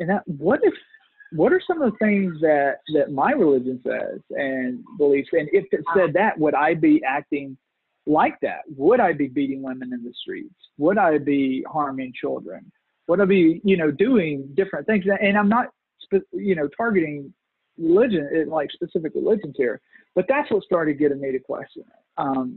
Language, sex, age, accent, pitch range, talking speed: English, male, 40-59, American, 140-195 Hz, 190 wpm